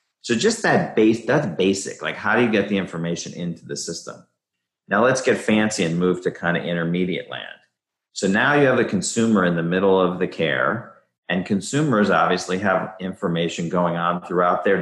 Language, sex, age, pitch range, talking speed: English, male, 40-59, 85-105 Hz, 195 wpm